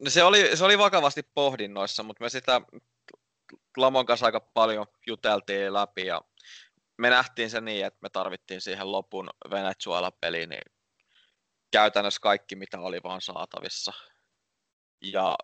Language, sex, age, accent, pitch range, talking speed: Finnish, male, 20-39, native, 100-105 Hz, 130 wpm